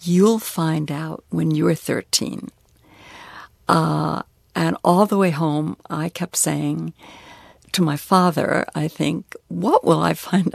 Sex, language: female, English